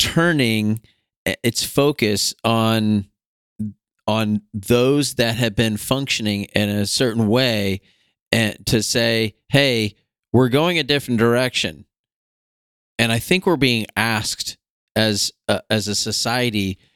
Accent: American